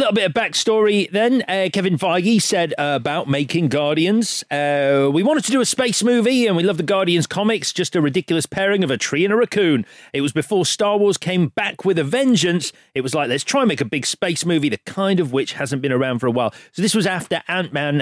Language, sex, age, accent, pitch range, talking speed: English, male, 40-59, British, 125-180 Hz, 245 wpm